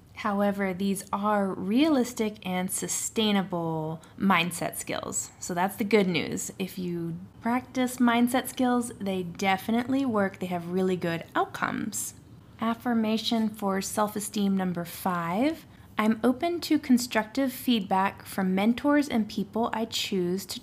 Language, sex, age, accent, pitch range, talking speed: English, female, 20-39, American, 185-235 Hz, 125 wpm